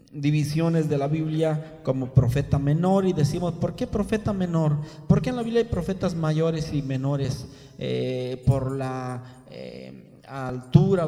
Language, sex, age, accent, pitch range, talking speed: Spanish, male, 40-59, Mexican, 135-165 Hz, 150 wpm